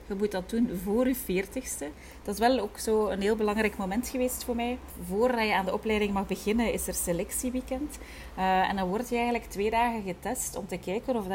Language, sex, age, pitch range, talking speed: Dutch, female, 30-49, 185-230 Hz, 220 wpm